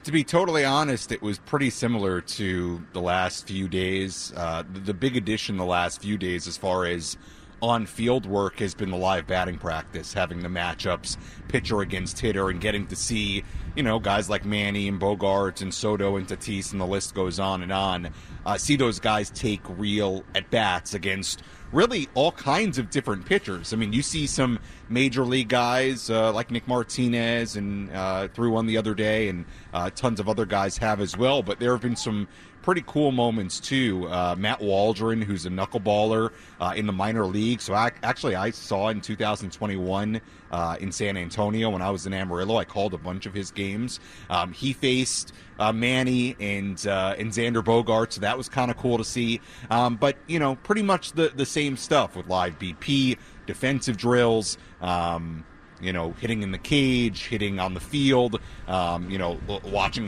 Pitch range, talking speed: 95-120 Hz, 195 wpm